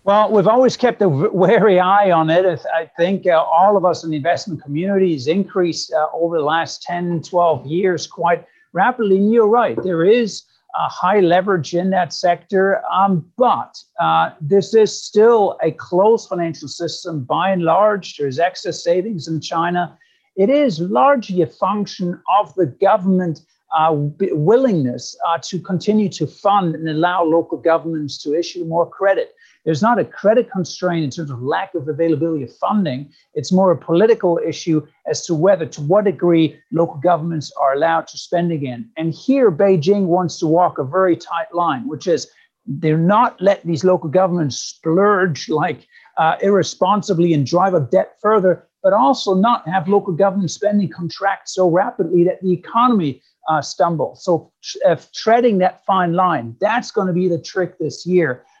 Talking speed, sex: 170 wpm, male